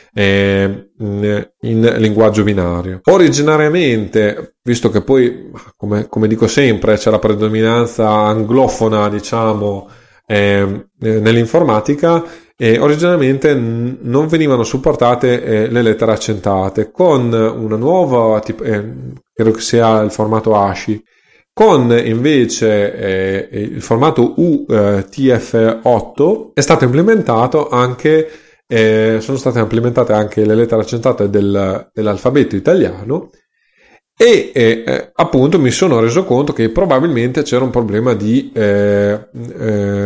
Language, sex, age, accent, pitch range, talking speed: Italian, male, 30-49, native, 105-125 Hz, 110 wpm